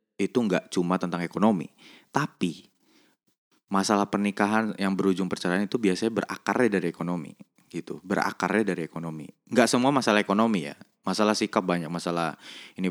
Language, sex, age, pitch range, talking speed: Indonesian, male, 20-39, 90-110 Hz, 140 wpm